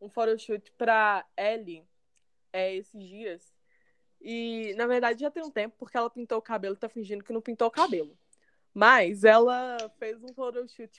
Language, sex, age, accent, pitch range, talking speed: Portuguese, female, 20-39, Brazilian, 200-255 Hz, 175 wpm